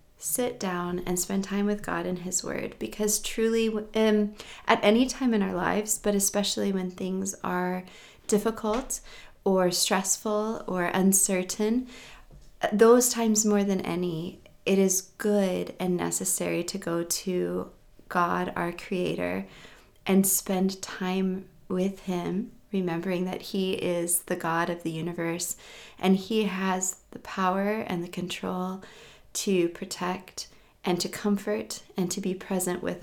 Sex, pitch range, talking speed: female, 180-205 Hz, 140 wpm